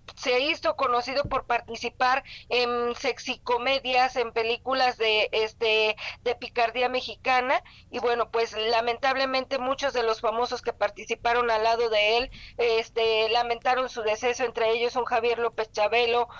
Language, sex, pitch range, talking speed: Spanish, female, 230-260 Hz, 145 wpm